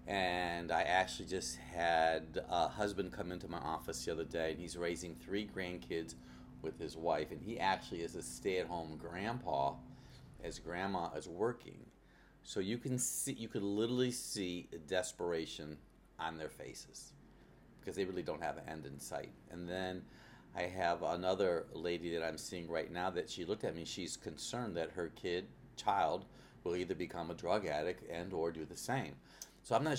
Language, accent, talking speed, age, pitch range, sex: English, American, 185 wpm, 40-59, 85-100 Hz, male